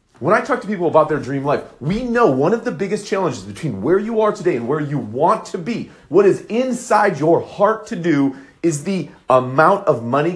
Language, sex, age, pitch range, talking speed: English, male, 40-59, 120-195 Hz, 225 wpm